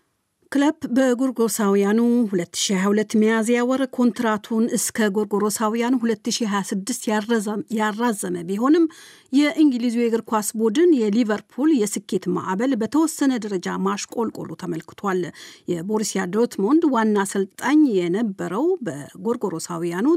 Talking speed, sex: 70 wpm, female